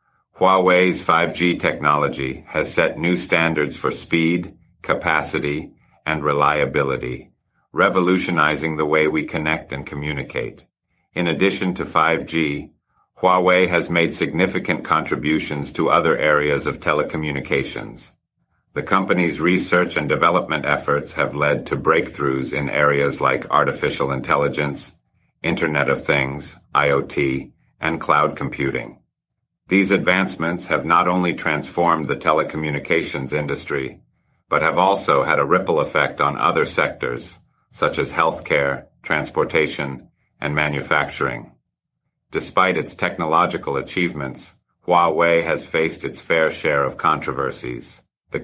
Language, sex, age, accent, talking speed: English, male, 50-69, American, 115 wpm